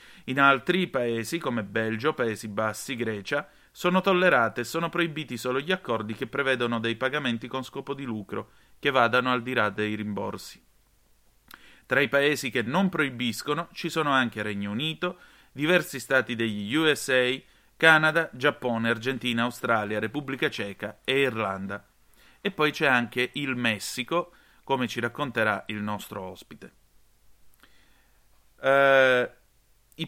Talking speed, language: 135 wpm, Italian